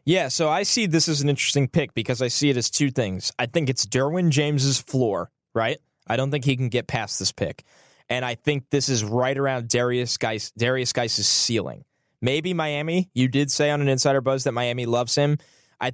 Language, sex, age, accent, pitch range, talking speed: English, male, 10-29, American, 115-145 Hz, 220 wpm